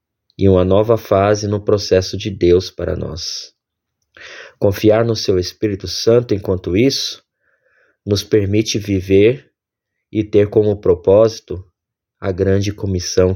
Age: 20-39